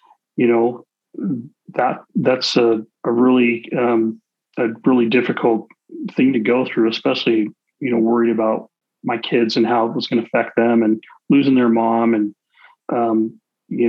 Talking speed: 160 wpm